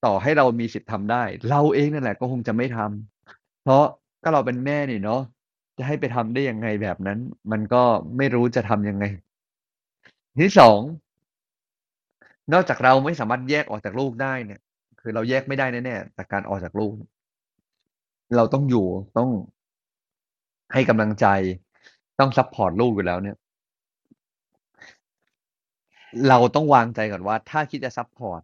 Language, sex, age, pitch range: Thai, male, 30-49, 105-125 Hz